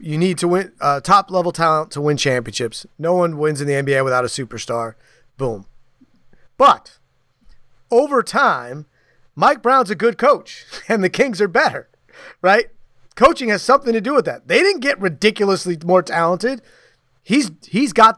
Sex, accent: male, American